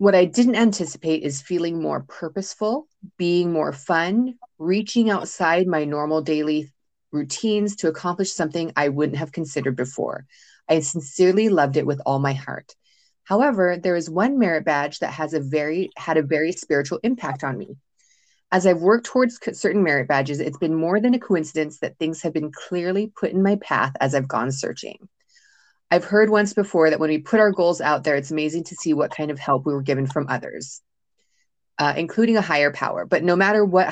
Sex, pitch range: female, 155-205 Hz